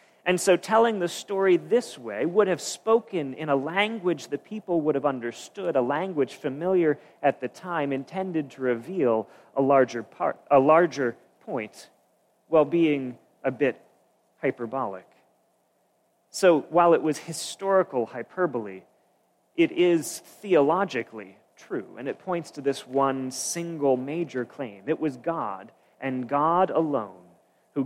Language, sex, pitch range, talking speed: English, male, 130-180 Hz, 135 wpm